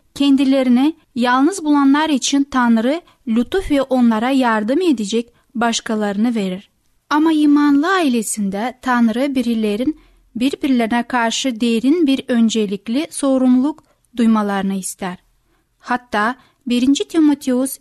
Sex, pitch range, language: female, 230-280 Hz, Turkish